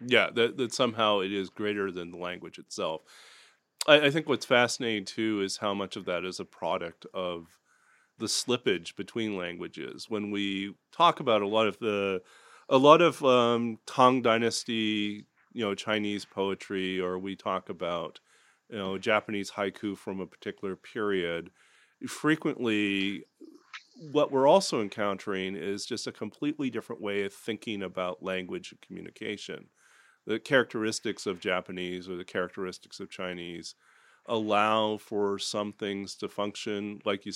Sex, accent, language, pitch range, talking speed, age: male, American, English, 95-110 Hz, 150 wpm, 40-59